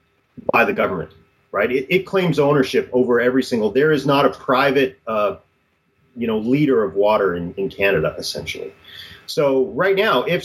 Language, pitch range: English, 100-140 Hz